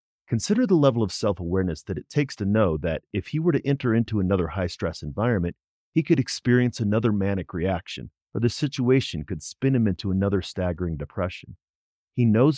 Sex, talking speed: male, 180 wpm